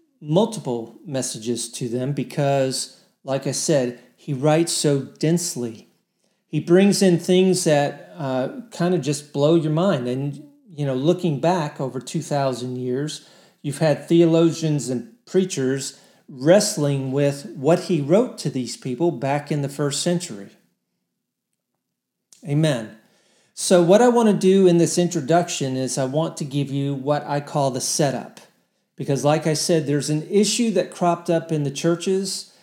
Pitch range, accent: 135-175 Hz, American